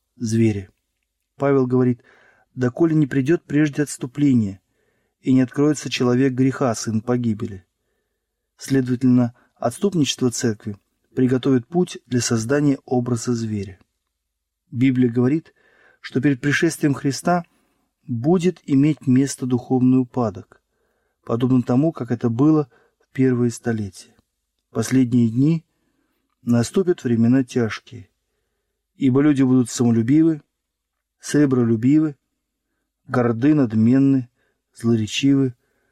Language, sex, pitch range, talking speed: Russian, male, 115-140 Hz, 95 wpm